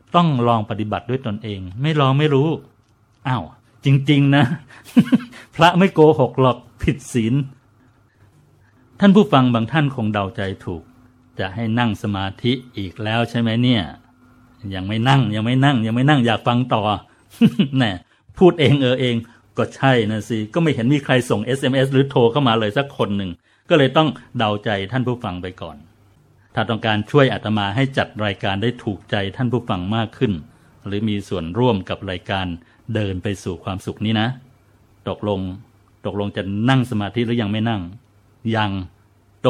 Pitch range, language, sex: 105-130 Hz, Thai, male